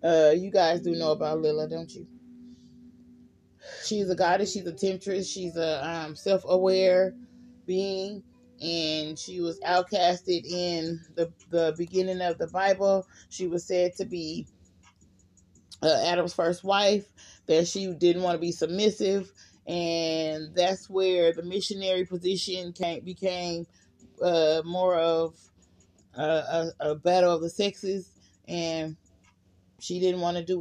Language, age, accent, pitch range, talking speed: English, 30-49, American, 165-190 Hz, 135 wpm